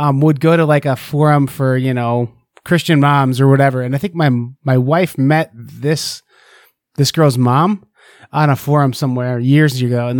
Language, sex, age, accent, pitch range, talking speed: English, male, 30-49, American, 130-155 Hz, 190 wpm